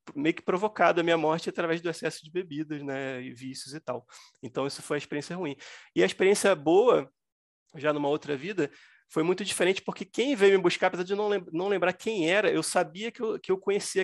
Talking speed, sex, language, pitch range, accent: 215 wpm, male, Portuguese, 140-180 Hz, Brazilian